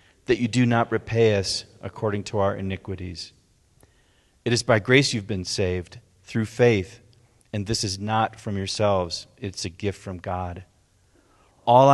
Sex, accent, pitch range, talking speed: male, American, 95-120 Hz, 155 wpm